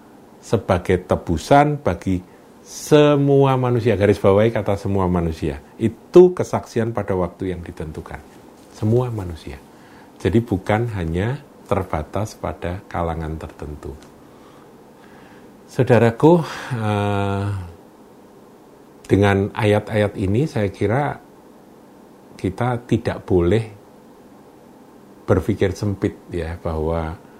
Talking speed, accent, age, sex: 85 wpm, native, 50-69, male